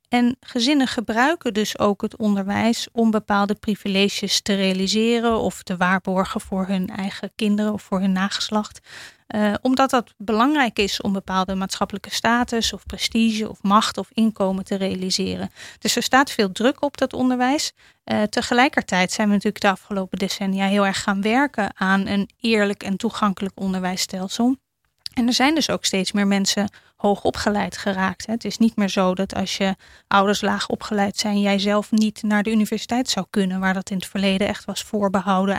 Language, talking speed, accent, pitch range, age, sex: Dutch, 175 wpm, Dutch, 195-230 Hz, 30-49, female